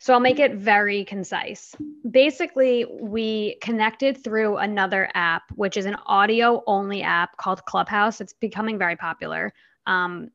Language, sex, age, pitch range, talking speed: English, female, 20-39, 195-235 Hz, 145 wpm